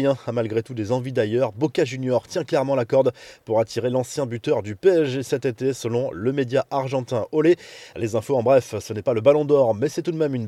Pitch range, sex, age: 120-150 Hz, male, 20-39